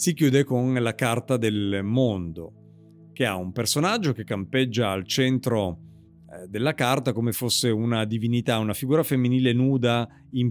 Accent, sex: native, male